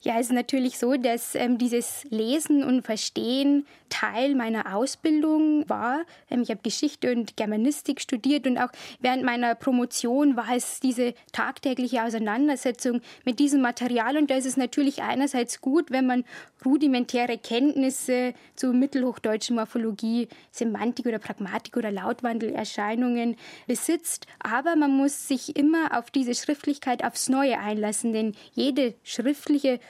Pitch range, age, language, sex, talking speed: 235-270 Hz, 10-29, German, female, 140 wpm